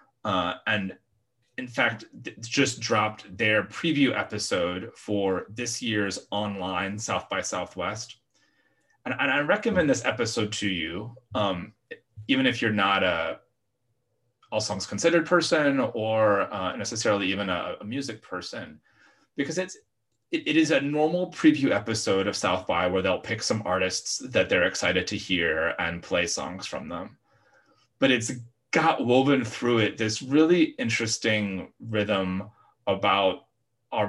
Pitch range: 100-130 Hz